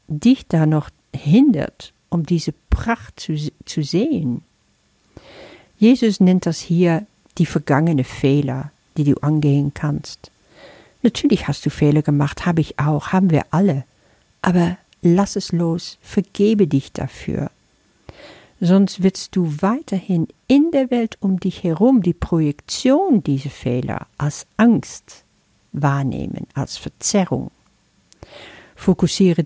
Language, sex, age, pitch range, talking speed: German, female, 50-69, 145-195 Hz, 120 wpm